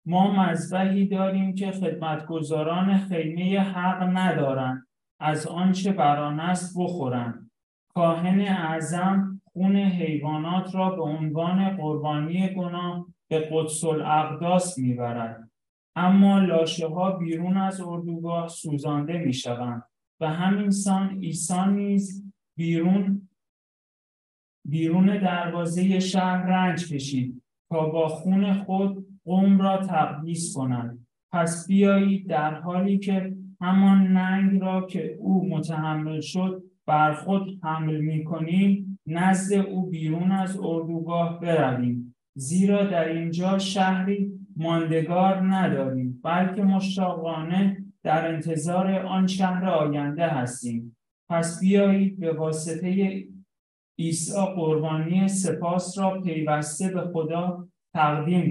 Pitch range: 155-190 Hz